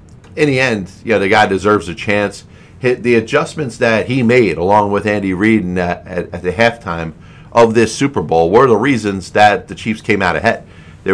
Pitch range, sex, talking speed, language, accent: 95-120 Hz, male, 205 wpm, English, American